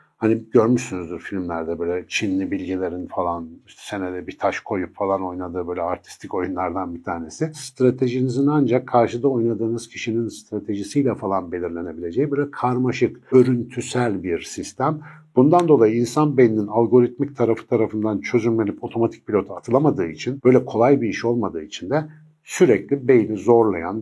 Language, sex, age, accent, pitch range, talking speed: Turkish, male, 60-79, native, 100-125 Hz, 130 wpm